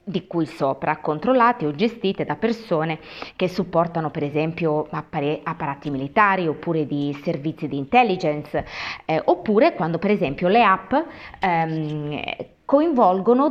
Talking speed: 125 wpm